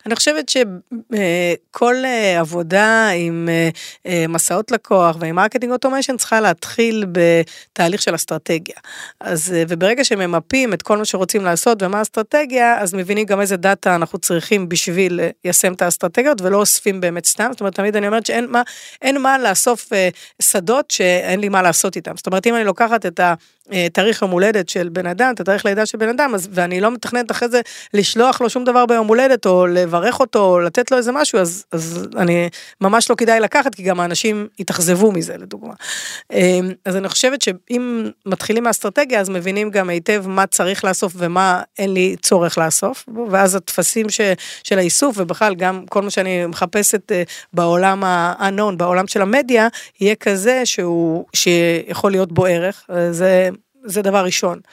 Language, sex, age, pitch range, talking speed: Hebrew, female, 30-49, 180-230 Hz, 160 wpm